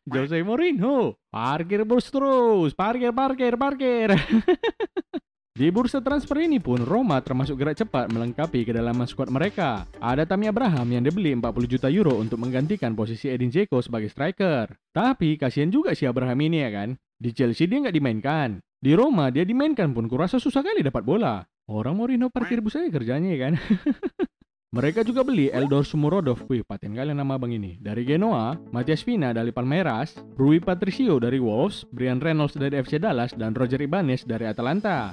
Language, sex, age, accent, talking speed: Indonesian, male, 20-39, native, 165 wpm